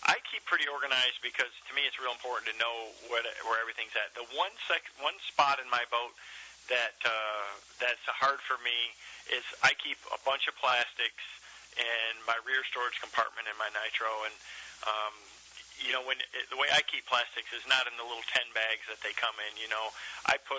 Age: 40-59